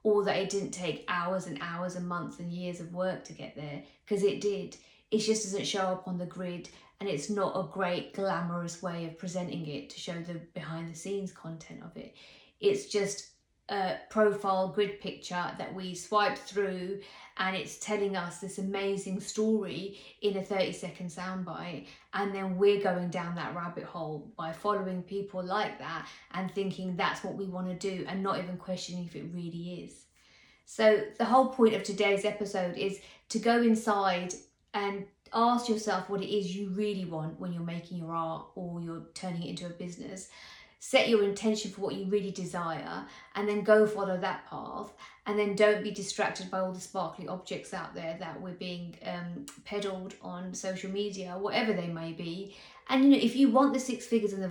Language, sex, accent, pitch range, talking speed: English, female, British, 175-205 Hz, 195 wpm